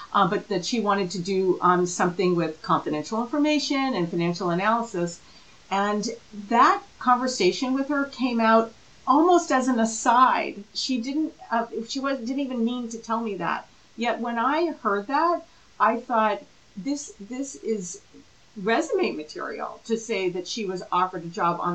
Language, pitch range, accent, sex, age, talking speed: English, 180-230 Hz, American, female, 50-69, 165 wpm